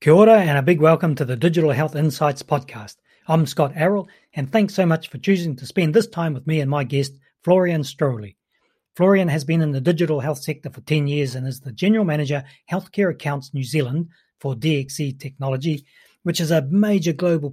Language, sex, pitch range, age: English, male, 135-170 Hz, 40-59